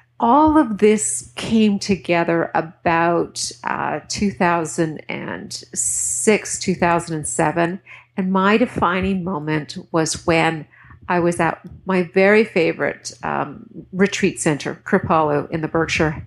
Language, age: English, 50-69